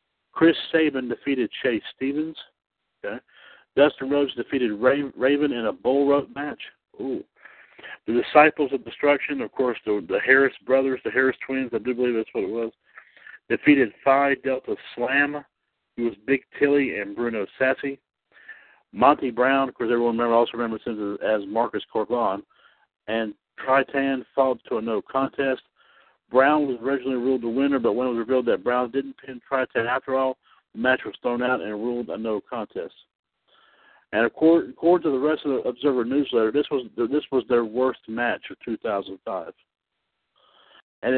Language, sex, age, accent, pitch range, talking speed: English, male, 60-79, American, 120-140 Hz, 170 wpm